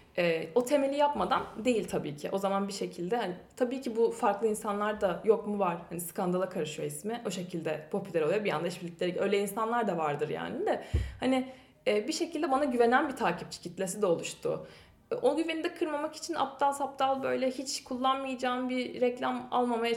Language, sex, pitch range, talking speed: Turkish, female, 195-265 Hz, 190 wpm